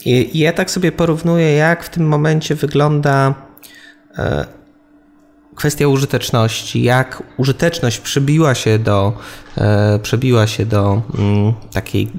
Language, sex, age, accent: Polish, male, 20-39, native